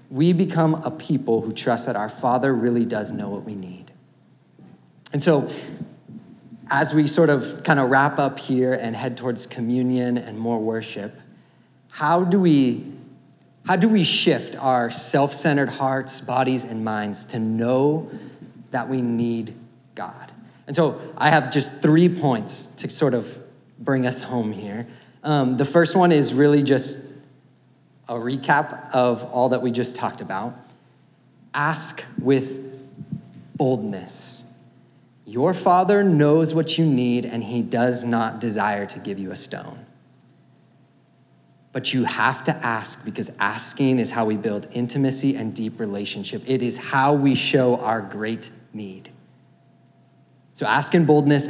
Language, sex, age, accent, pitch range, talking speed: English, male, 40-59, American, 120-150 Hz, 150 wpm